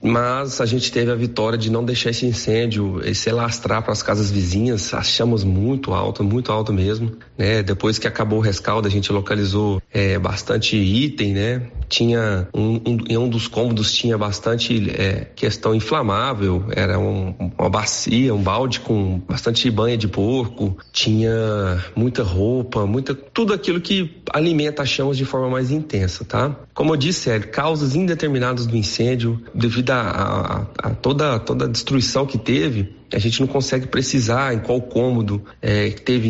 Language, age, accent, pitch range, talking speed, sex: Portuguese, 40-59, Brazilian, 105-125 Hz, 170 wpm, male